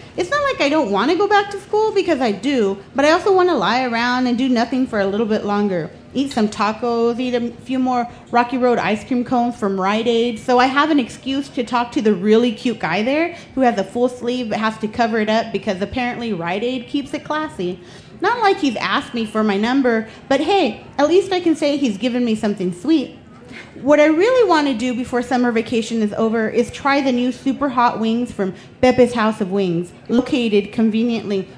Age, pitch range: 30-49, 215-280 Hz